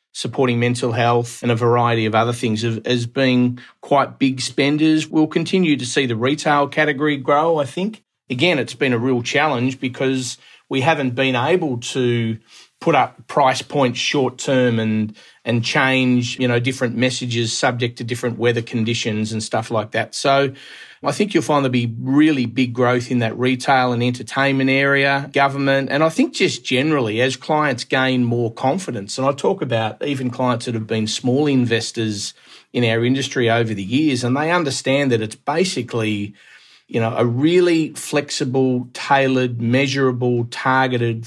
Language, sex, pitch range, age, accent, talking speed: English, male, 120-140 Hz, 30-49, Australian, 170 wpm